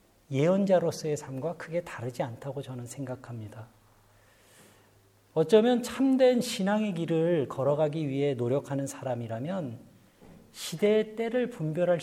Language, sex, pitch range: Korean, male, 125-205 Hz